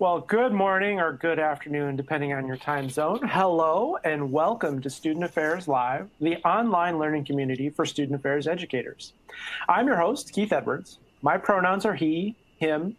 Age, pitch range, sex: 30-49, 145-180 Hz, male